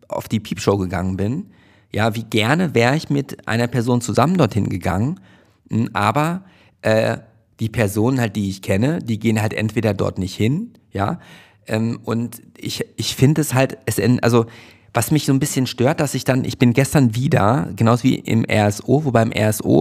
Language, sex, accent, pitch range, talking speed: German, male, German, 105-130 Hz, 185 wpm